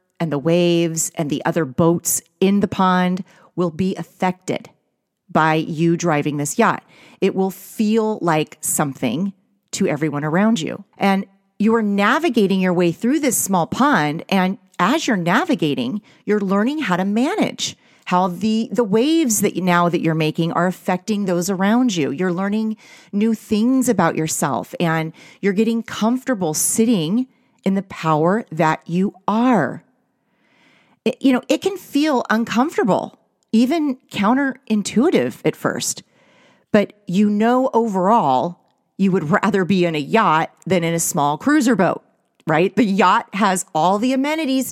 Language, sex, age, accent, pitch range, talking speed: English, female, 30-49, American, 170-235 Hz, 150 wpm